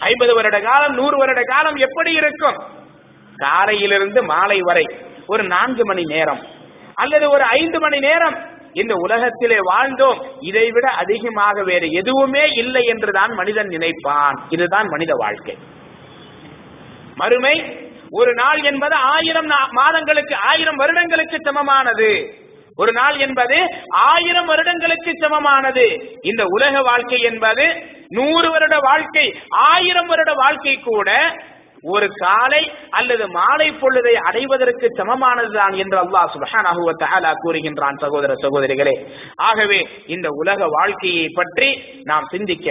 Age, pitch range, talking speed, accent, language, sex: 30-49, 200-305 Hz, 115 wpm, Indian, English, male